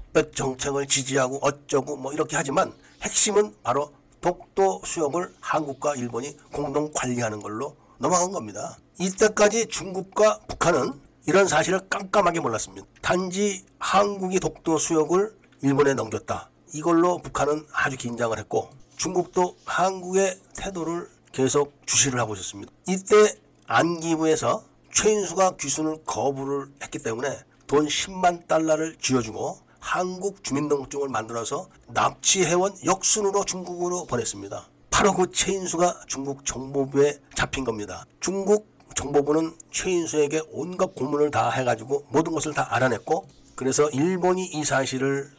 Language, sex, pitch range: Korean, male, 135-180 Hz